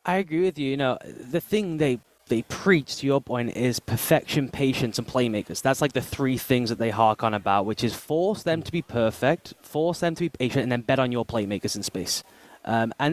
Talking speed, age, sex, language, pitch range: 235 wpm, 10-29, male, English, 120-155 Hz